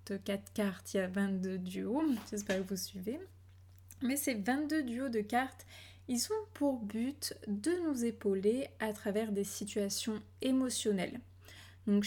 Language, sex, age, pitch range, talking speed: French, female, 20-39, 195-250 Hz, 150 wpm